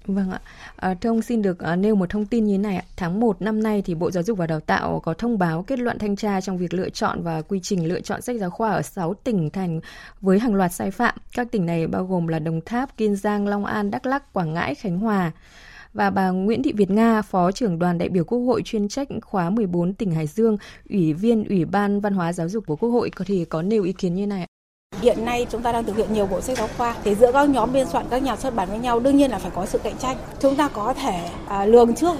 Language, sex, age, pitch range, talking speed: Vietnamese, female, 20-39, 195-260 Hz, 275 wpm